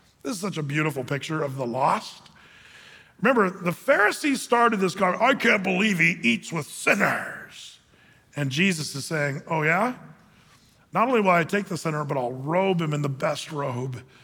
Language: English